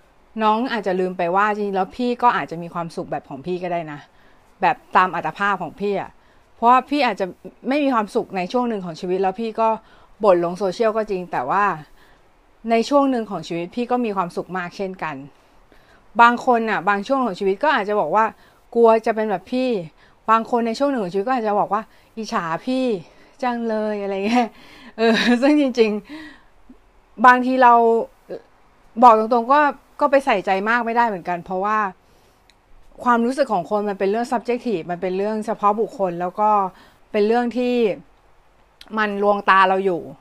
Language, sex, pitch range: Thai, female, 190-240 Hz